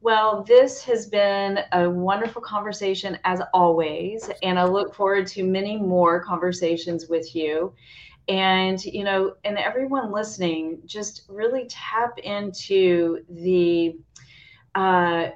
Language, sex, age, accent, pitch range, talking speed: English, female, 30-49, American, 170-205 Hz, 120 wpm